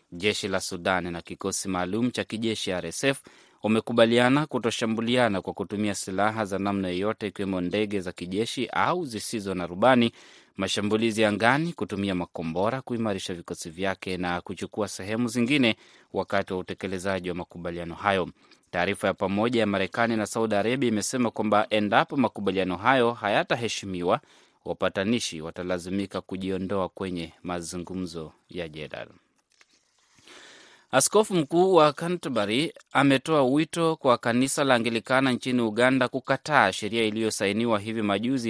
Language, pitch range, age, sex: Swahili, 95-120 Hz, 30-49, male